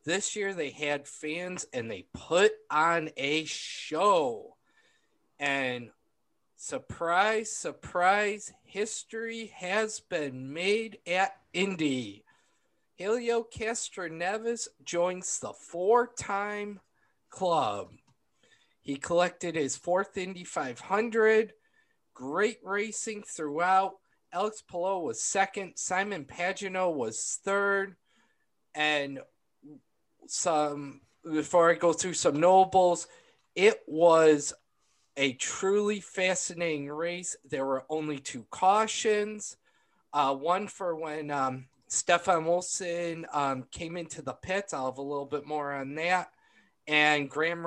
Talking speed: 105 wpm